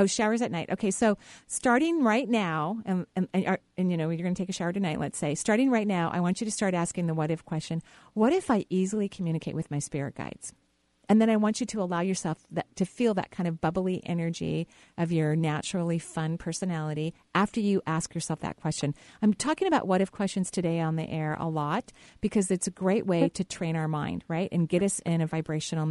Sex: female